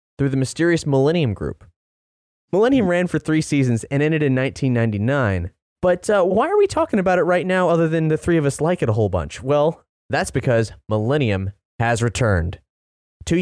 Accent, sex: American, male